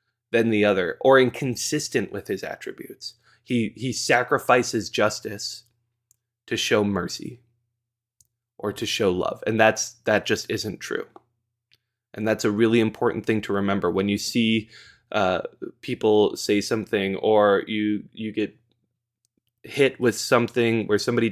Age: 20-39